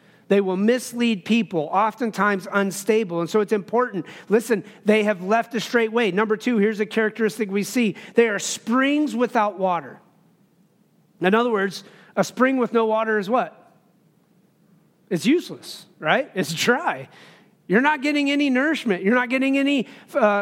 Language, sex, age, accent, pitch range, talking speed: English, male, 40-59, American, 200-245 Hz, 160 wpm